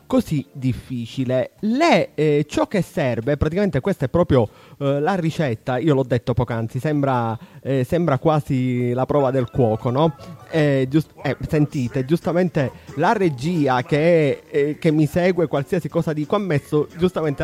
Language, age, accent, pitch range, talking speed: Italian, 30-49, native, 130-180 Hz, 150 wpm